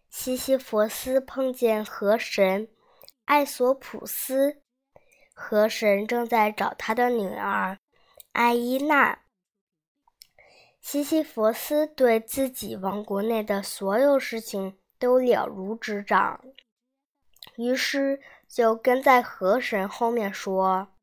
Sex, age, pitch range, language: male, 20-39, 215-265 Hz, Chinese